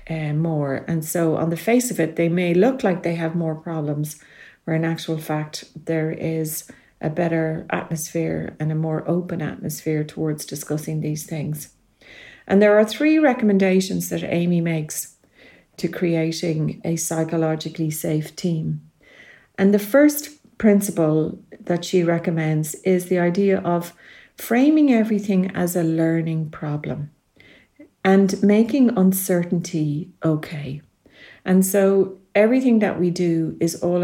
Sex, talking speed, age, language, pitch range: female, 135 wpm, 40-59, English, 160-190 Hz